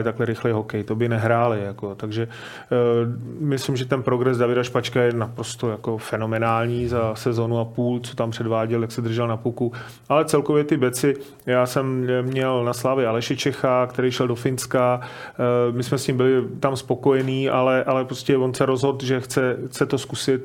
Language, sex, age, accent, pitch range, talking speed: Czech, male, 30-49, native, 120-130 Hz, 190 wpm